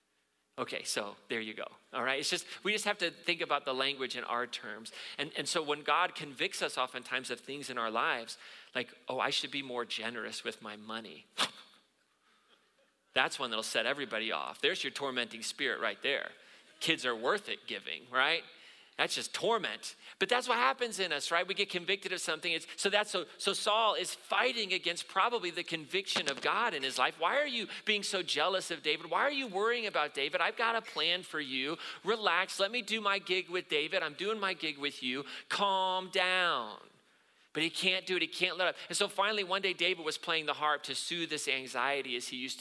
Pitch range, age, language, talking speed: 130-190 Hz, 40-59, English, 215 wpm